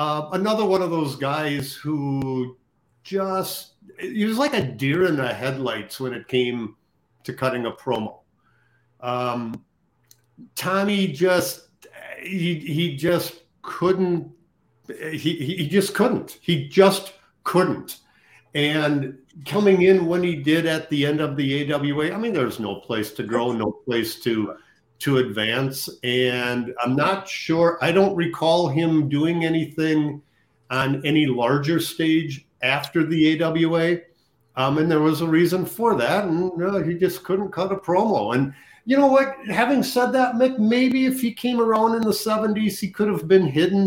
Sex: male